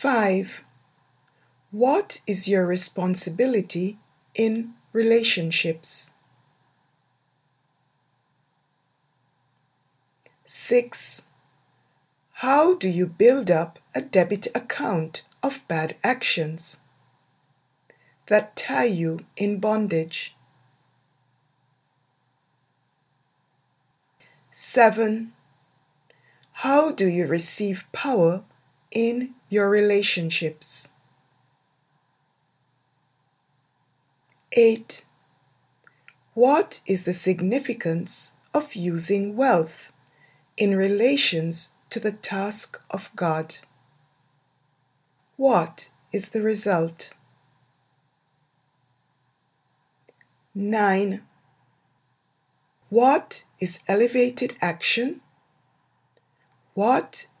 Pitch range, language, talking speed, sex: 135-205 Hz, English, 60 wpm, female